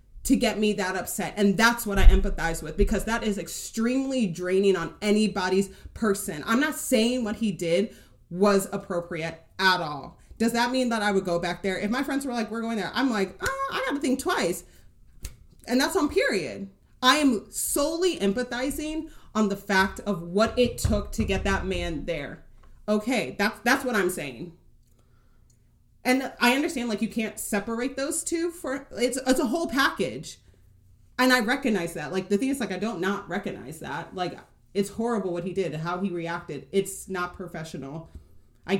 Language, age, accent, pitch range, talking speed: English, 30-49, American, 175-235 Hz, 190 wpm